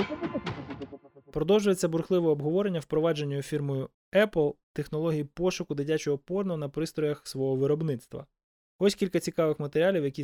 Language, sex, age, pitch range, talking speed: Ukrainian, male, 20-39, 135-175 Hz, 110 wpm